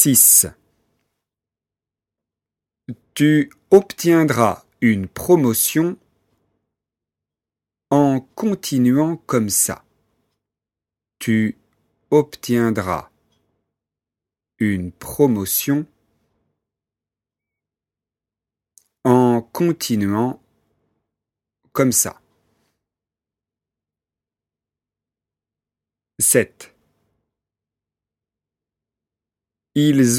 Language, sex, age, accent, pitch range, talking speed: French, male, 50-69, French, 105-140 Hz, 40 wpm